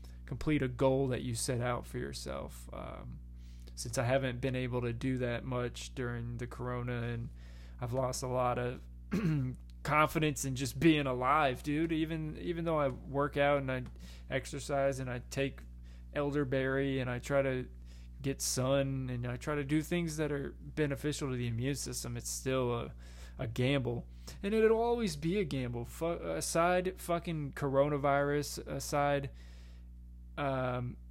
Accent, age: American, 20-39